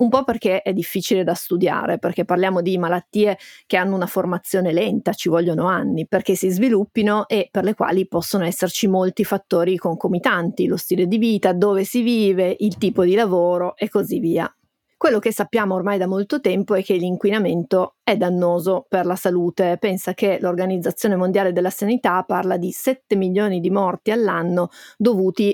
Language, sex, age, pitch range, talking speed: Italian, female, 30-49, 180-210 Hz, 175 wpm